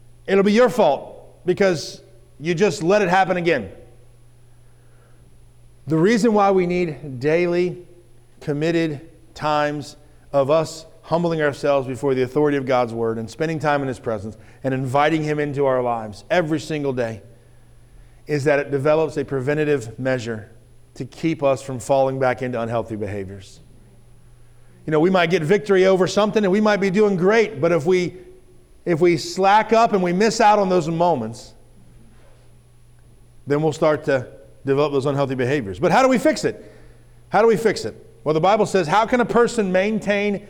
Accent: American